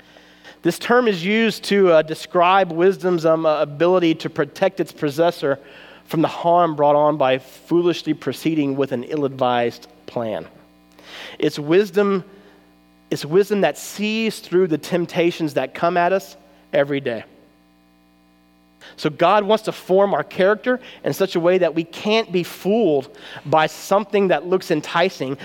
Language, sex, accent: English, male, American